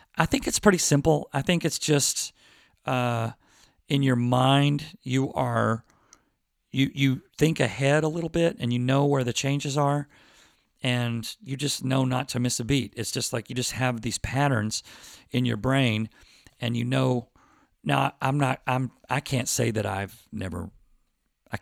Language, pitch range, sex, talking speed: English, 115-145 Hz, male, 175 wpm